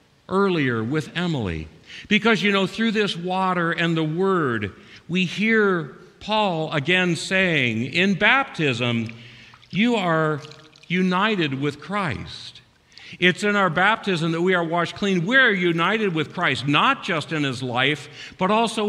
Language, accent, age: English, American, 50-69